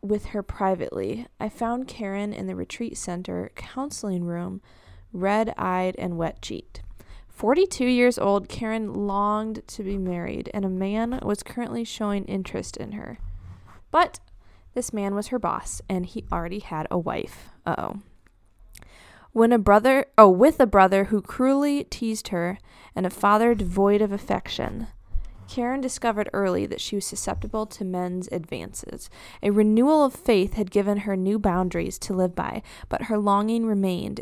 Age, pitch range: 20-39, 180-220 Hz